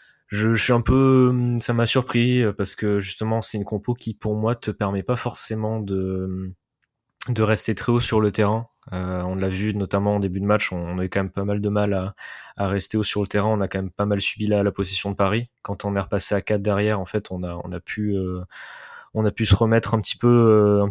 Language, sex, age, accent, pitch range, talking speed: French, male, 20-39, French, 95-110 Hz, 260 wpm